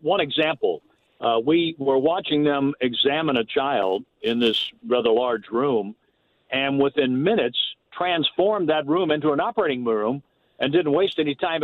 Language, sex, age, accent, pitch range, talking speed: English, male, 60-79, American, 120-140 Hz, 155 wpm